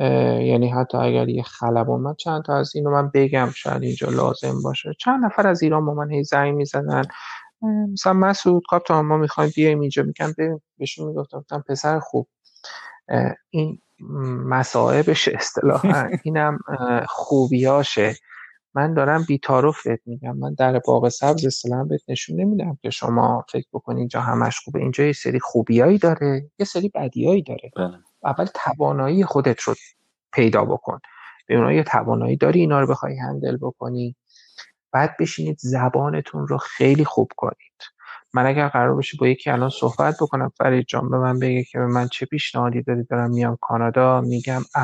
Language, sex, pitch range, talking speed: Persian, male, 120-150 Hz, 150 wpm